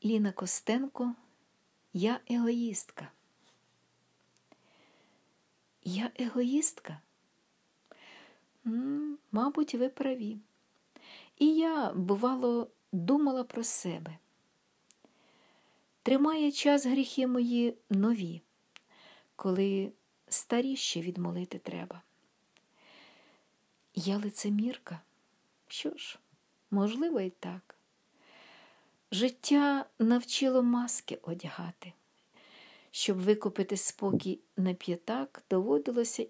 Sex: female